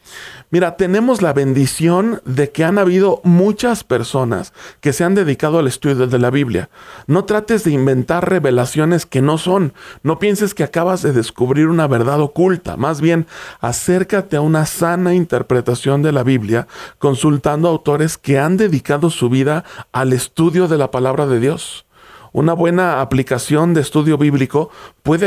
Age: 40-59